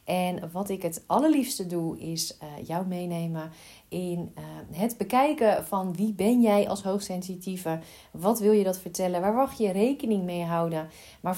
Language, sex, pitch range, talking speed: Dutch, female, 175-225 Hz, 170 wpm